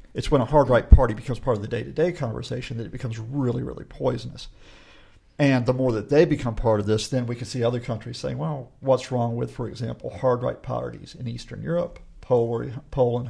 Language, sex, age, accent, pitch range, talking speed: English, male, 50-69, American, 115-135 Hz, 205 wpm